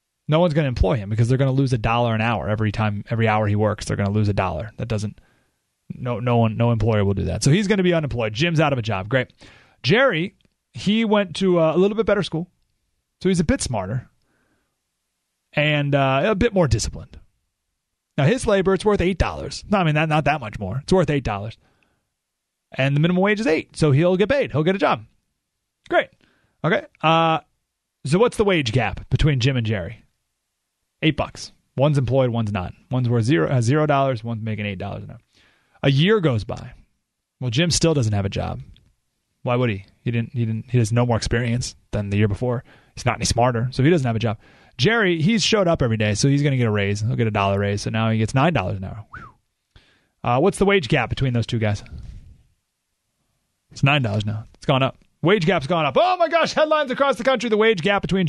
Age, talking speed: 30-49, 225 wpm